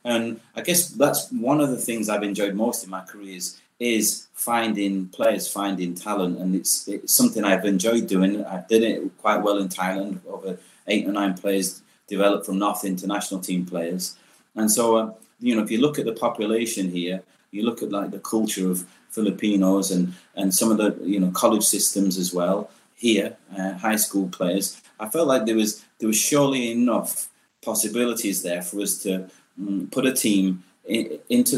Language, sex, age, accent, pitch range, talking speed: English, male, 30-49, British, 95-110 Hz, 190 wpm